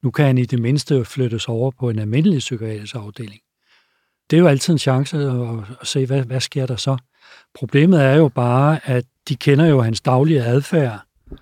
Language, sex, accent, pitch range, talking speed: Danish, male, native, 115-135 Hz, 190 wpm